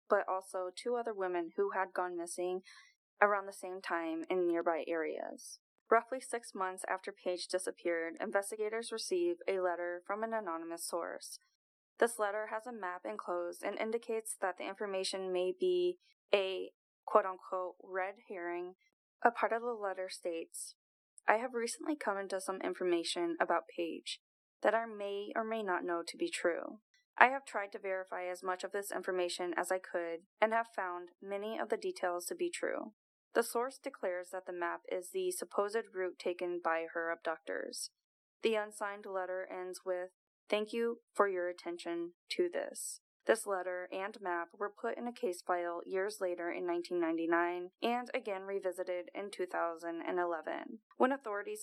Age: 20-39